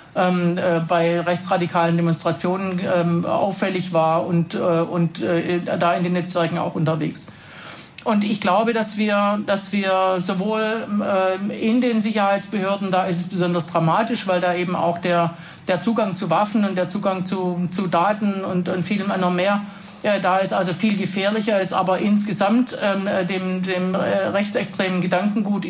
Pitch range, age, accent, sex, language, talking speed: 180-205 Hz, 50-69, German, male, German, 160 wpm